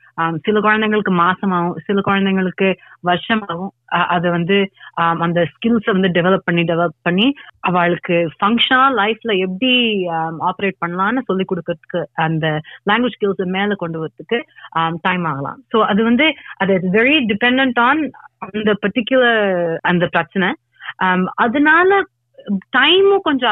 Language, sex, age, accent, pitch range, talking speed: Tamil, female, 30-49, native, 175-245 Hz, 120 wpm